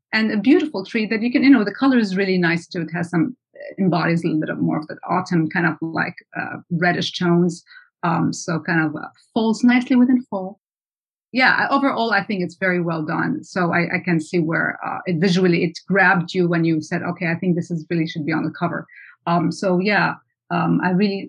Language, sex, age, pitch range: English, female, 30-49, 170-200 Hz